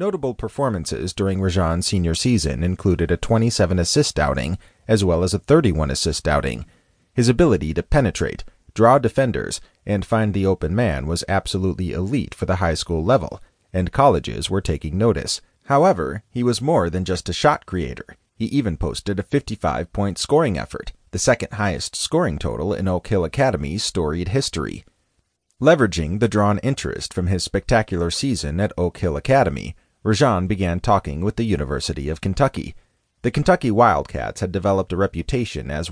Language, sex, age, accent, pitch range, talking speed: English, male, 30-49, American, 85-110 Hz, 155 wpm